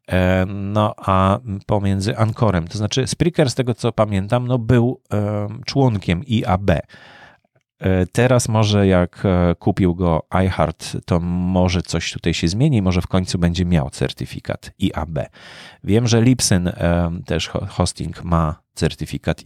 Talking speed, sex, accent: 125 wpm, male, native